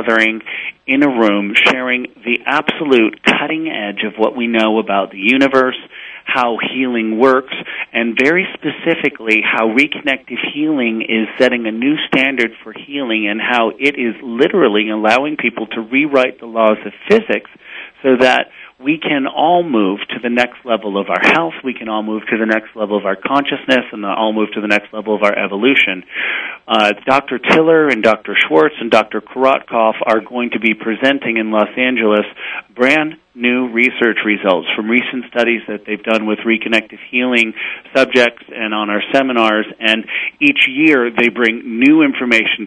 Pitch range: 110-130 Hz